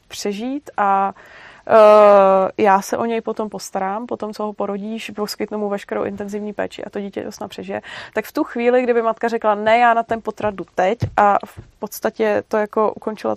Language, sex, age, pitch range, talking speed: Czech, female, 20-39, 205-230 Hz, 180 wpm